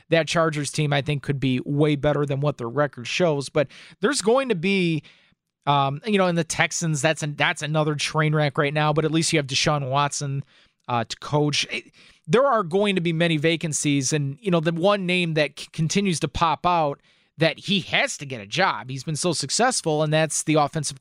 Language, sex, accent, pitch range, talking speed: English, male, American, 150-185 Hz, 220 wpm